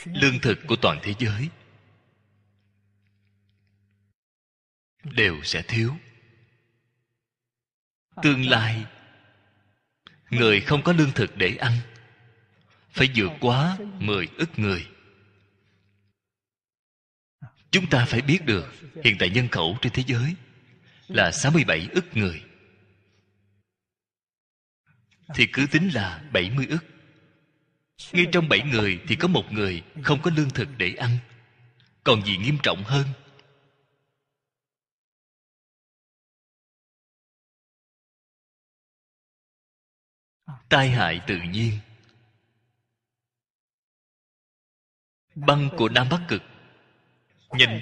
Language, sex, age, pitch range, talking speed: Vietnamese, male, 20-39, 100-140 Hz, 95 wpm